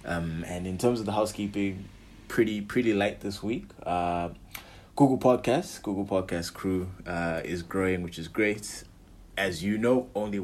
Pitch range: 85-100 Hz